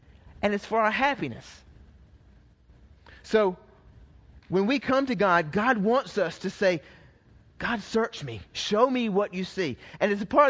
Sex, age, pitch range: male, 30-49, 165-230 Hz